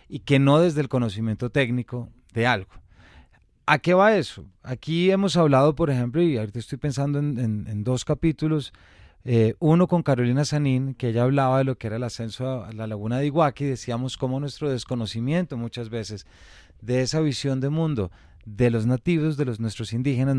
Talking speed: 190 wpm